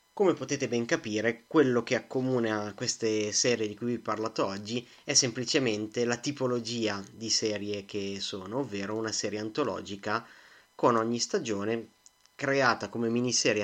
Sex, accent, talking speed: male, native, 155 wpm